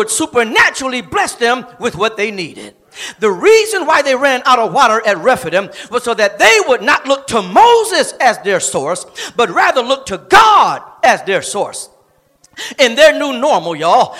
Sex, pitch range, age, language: male, 220-335 Hz, 40-59, English